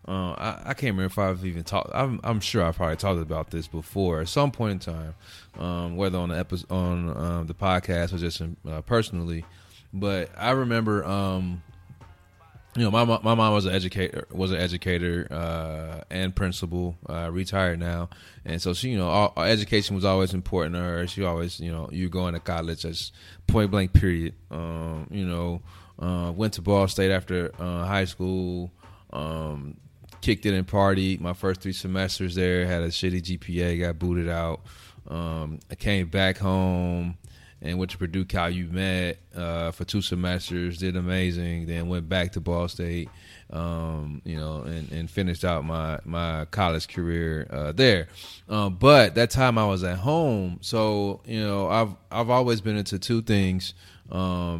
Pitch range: 85-100 Hz